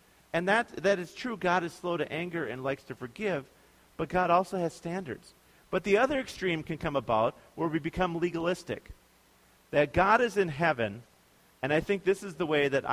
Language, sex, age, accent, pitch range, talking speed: English, male, 40-59, American, 115-165 Hz, 200 wpm